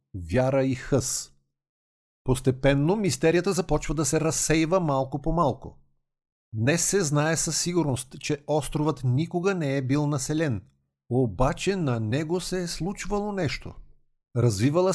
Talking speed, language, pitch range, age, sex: 130 wpm, Bulgarian, 125-170 Hz, 50-69, male